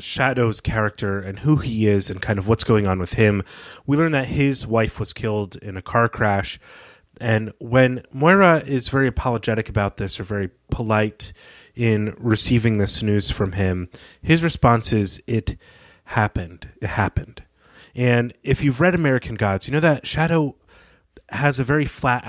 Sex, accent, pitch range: male, American, 100-125 Hz